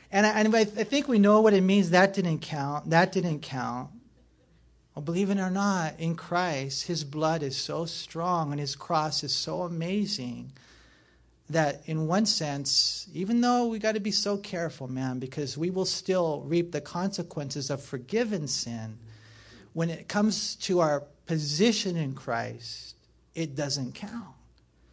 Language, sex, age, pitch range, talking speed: English, male, 40-59, 145-195 Hz, 170 wpm